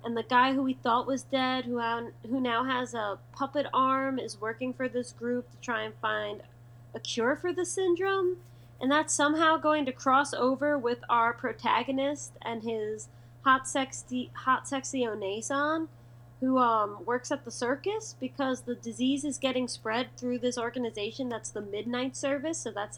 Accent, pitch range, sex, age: American, 205-275 Hz, female, 20-39